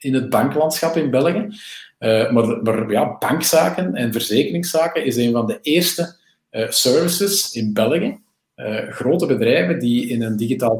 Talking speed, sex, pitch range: 155 wpm, male, 110-150 Hz